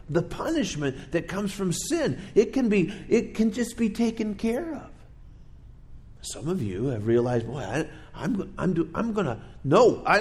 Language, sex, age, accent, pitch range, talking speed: English, male, 50-69, American, 115-185 Hz, 165 wpm